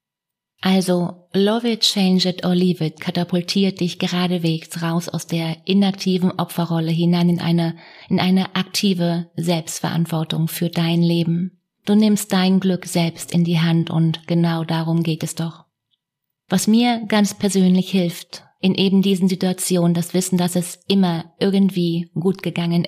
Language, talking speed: German, 150 wpm